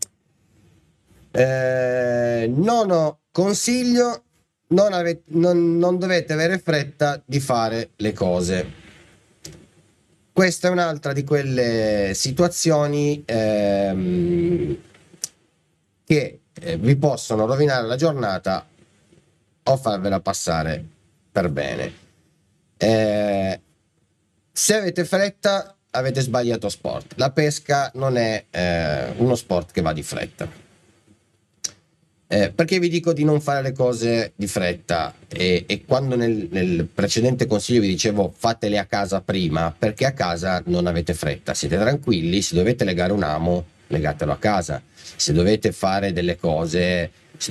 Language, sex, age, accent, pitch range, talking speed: Italian, male, 30-49, native, 90-150 Hz, 120 wpm